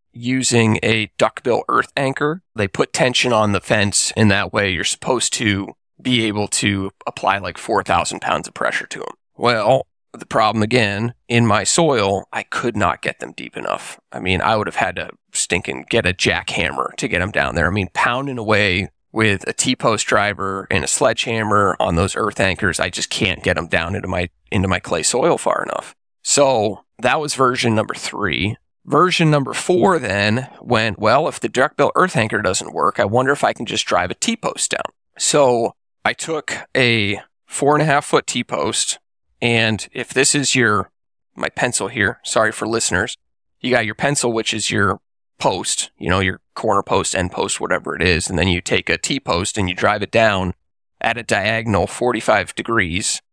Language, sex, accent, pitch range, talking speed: English, male, American, 95-125 Hz, 195 wpm